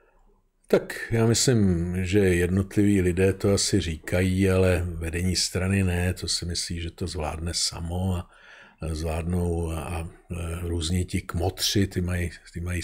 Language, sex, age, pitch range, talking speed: Czech, male, 50-69, 95-125 Hz, 140 wpm